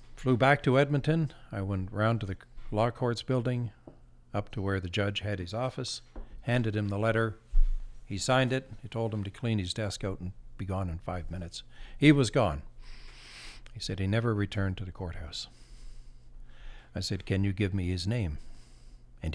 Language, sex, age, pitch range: English, male, 60-79, 85-115 Hz